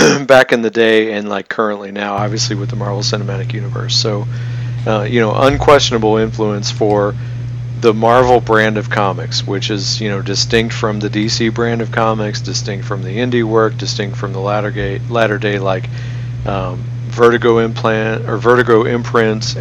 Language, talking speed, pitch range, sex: English, 170 wpm, 110-120 Hz, male